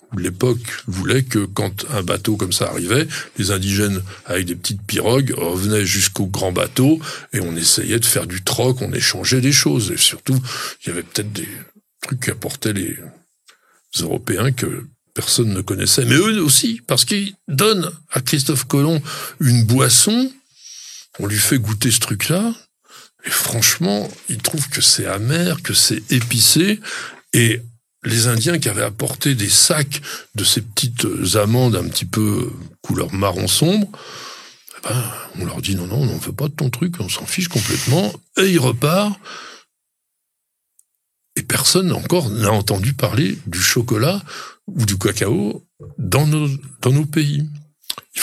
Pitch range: 110-155 Hz